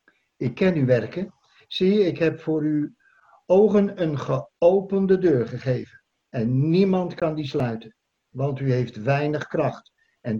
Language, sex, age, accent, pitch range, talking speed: Dutch, male, 50-69, Dutch, 135-180 Hz, 145 wpm